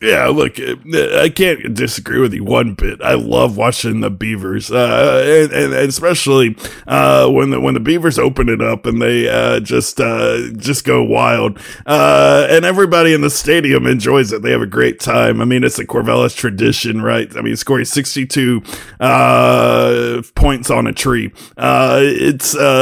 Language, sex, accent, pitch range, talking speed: English, male, American, 95-140 Hz, 170 wpm